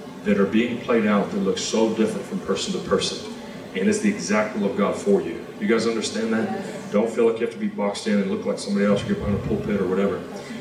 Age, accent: 30-49, American